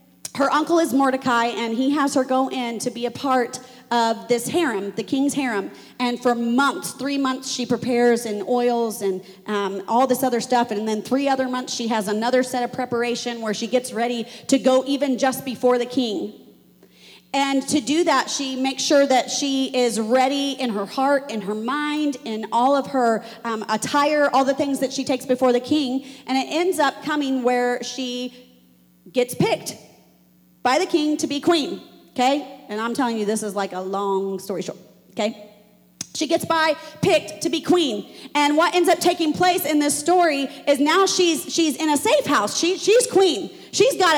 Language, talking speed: English, 200 wpm